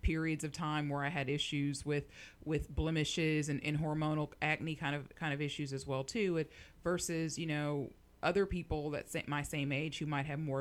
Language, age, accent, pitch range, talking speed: English, 30-49, American, 135-155 Hz, 205 wpm